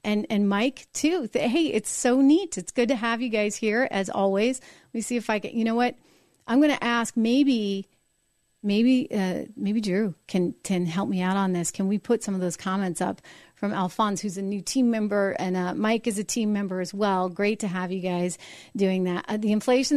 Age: 40-59